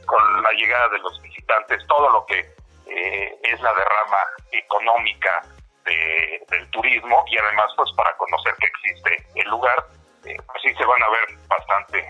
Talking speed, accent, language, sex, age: 170 wpm, Mexican, Spanish, male, 50-69